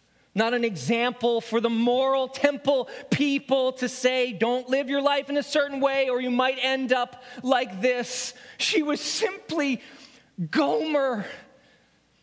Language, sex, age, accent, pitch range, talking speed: English, male, 40-59, American, 185-250 Hz, 140 wpm